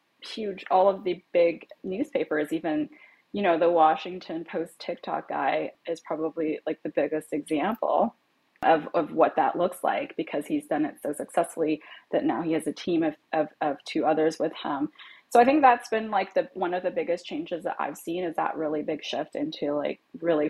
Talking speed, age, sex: 200 wpm, 20-39, female